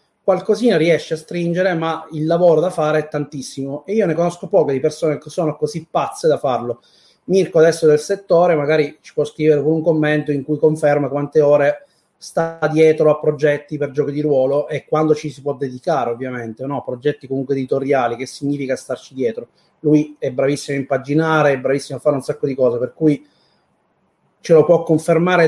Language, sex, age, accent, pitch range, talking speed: Italian, male, 30-49, native, 140-180 Hz, 195 wpm